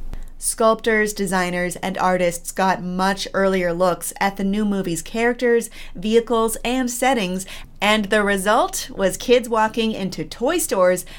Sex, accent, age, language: female, American, 30-49, English